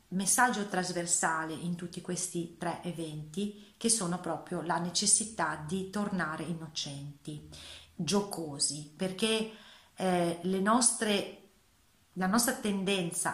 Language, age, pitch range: Italian, 40-59, 170-205 Hz